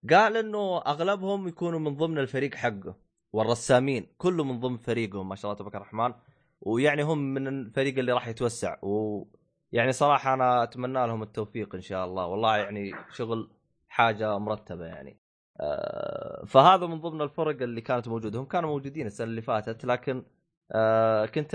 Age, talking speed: 20-39, 155 wpm